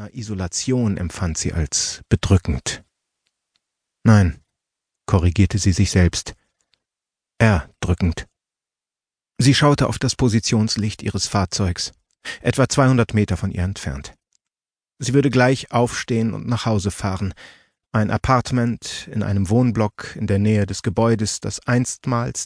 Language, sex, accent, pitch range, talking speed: German, male, German, 95-120 Hz, 120 wpm